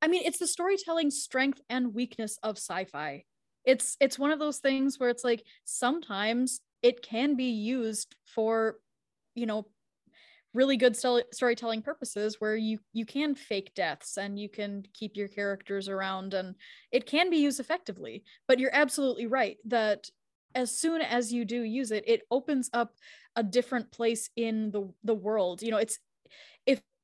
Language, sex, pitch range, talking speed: English, female, 215-270 Hz, 170 wpm